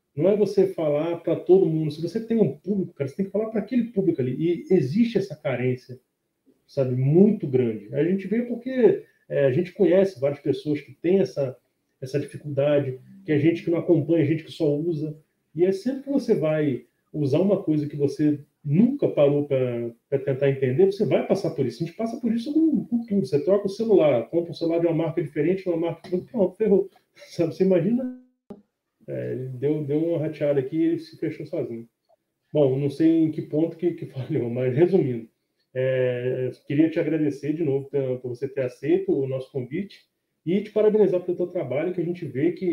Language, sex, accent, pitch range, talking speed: Portuguese, male, Brazilian, 145-190 Hz, 200 wpm